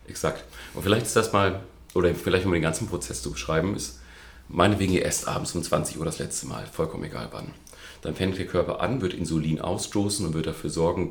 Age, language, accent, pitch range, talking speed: 40-59, German, German, 80-100 Hz, 220 wpm